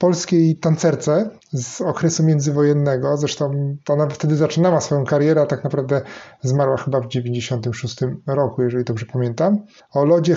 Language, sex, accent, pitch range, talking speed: Polish, male, native, 150-180 Hz, 145 wpm